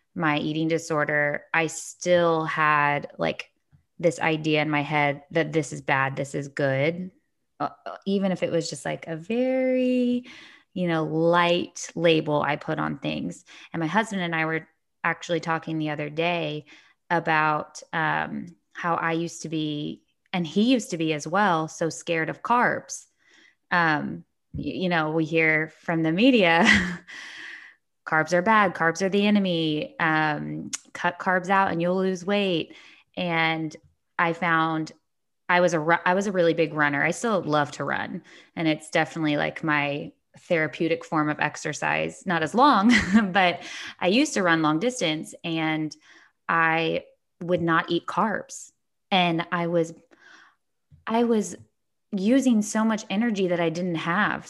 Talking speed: 155 wpm